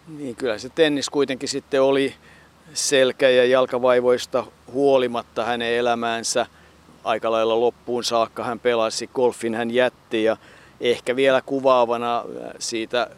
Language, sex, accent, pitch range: Finnish, male, native, 105-130 Hz